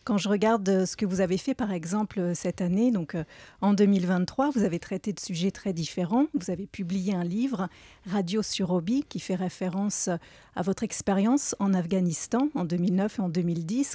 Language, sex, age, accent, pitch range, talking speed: French, female, 40-59, French, 185-215 Hz, 185 wpm